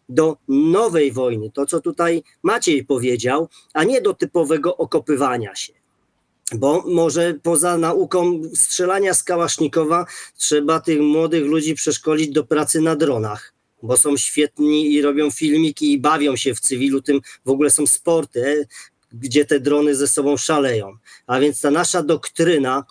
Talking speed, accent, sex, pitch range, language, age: 145 wpm, native, male, 130-165 Hz, Polish, 40-59